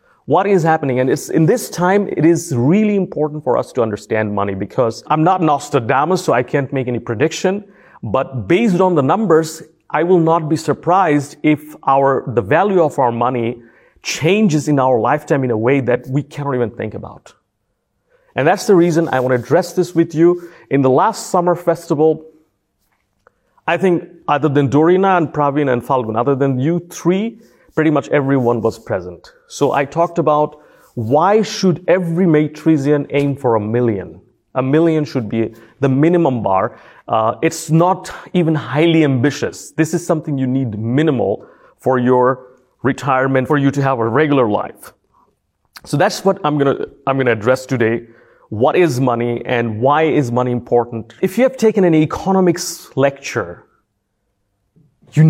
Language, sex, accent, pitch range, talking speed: English, male, Indian, 125-170 Hz, 175 wpm